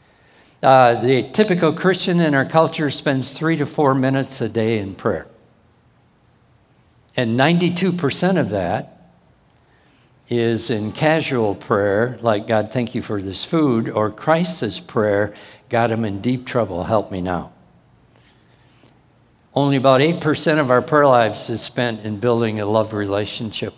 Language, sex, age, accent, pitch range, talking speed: English, male, 60-79, American, 110-135 Hz, 140 wpm